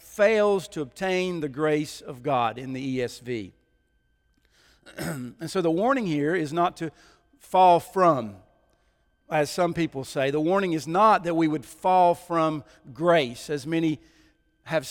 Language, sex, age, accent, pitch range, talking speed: English, male, 50-69, American, 145-180 Hz, 150 wpm